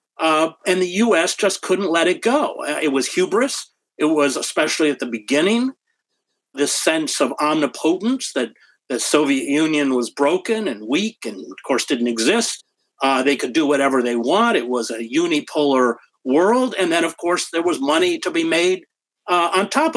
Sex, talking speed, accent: male, 180 wpm, American